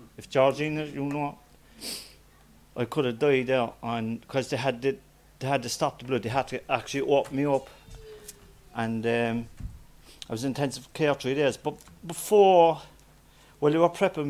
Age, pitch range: 40-59, 125-150 Hz